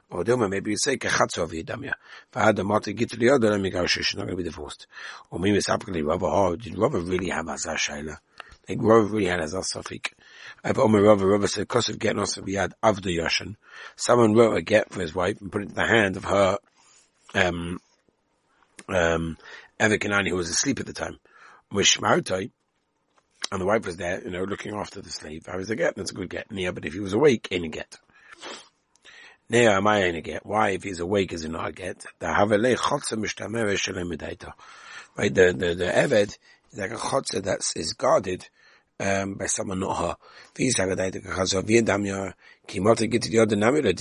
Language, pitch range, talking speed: English, 95-110 Hz, 195 wpm